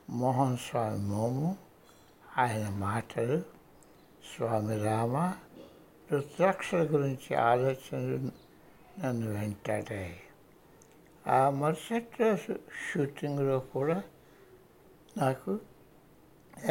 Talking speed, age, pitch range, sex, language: 45 wpm, 60-79, 120-170 Hz, male, Hindi